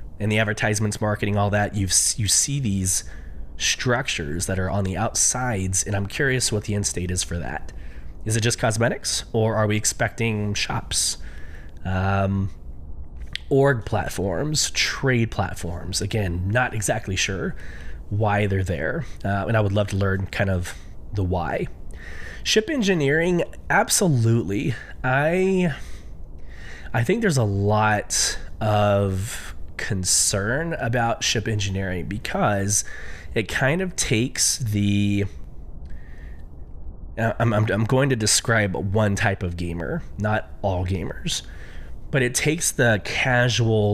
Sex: male